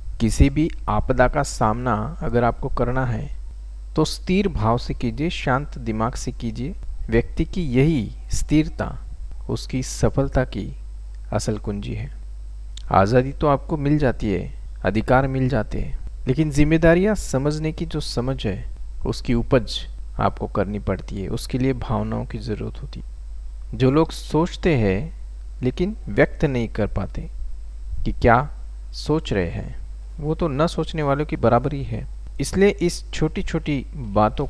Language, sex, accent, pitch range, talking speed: English, male, Indian, 90-135 Hz, 120 wpm